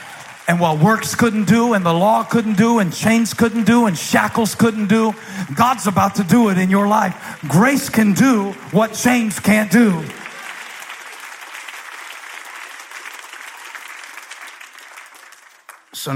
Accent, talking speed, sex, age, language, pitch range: American, 125 wpm, male, 40-59, English, 145-220 Hz